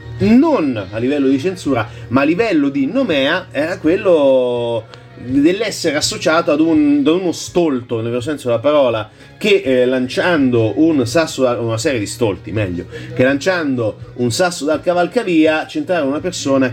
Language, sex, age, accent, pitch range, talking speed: Italian, male, 30-49, native, 120-180 Hz, 160 wpm